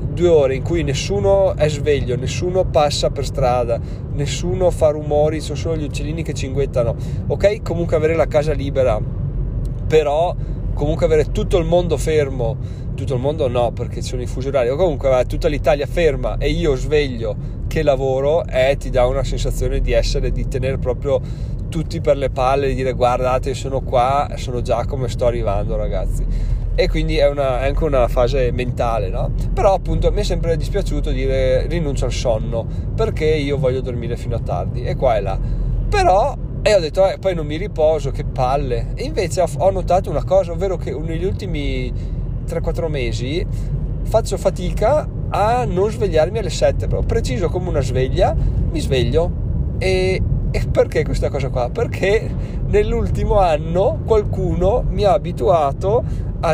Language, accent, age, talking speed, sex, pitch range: Italian, native, 30-49, 175 wpm, male, 120-145 Hz